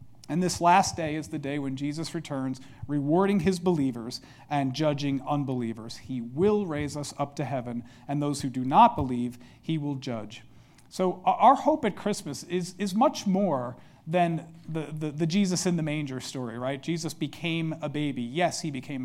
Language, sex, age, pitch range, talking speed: English, male, 40-59, 135-180 Hz, 185 wpm